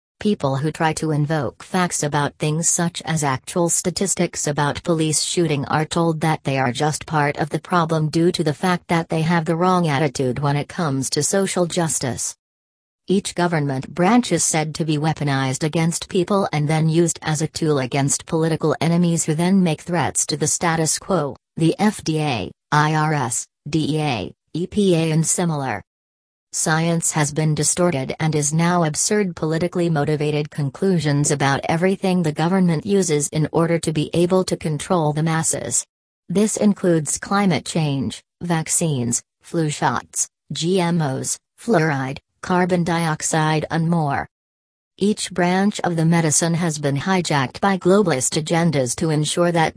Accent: American